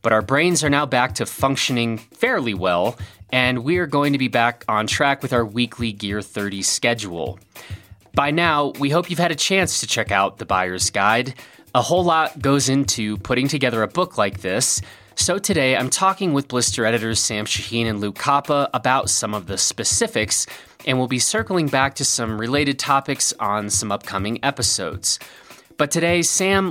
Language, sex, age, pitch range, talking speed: English, male, 30-49, 105-145 Hz, 185 wpm